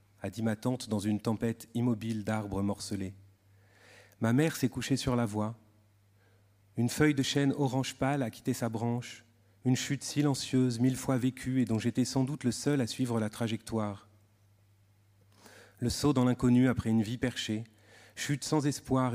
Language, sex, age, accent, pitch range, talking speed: French, male, 40-59, French, 105-130 Hz, 170 wpm